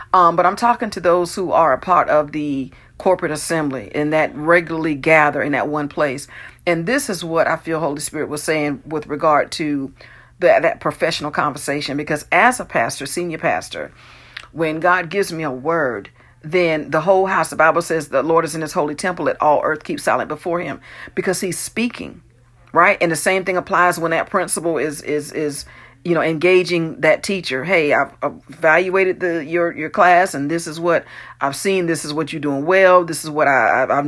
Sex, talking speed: female, 200 wpm